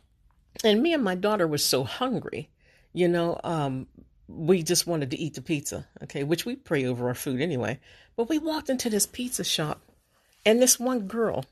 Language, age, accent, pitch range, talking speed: English, 50-69, American, 155-215 Hz, 195 wpm